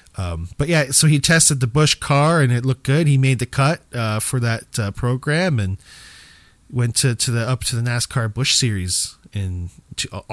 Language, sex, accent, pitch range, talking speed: English, male, American, 100-130 Hz, 210 wpm